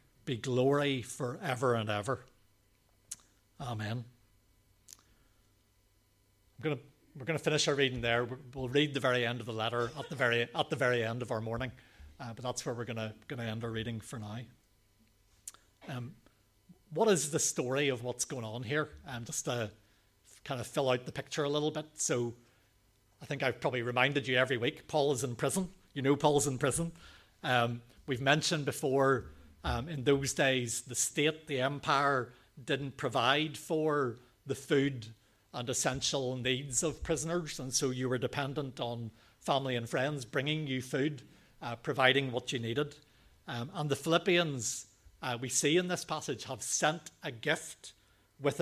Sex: male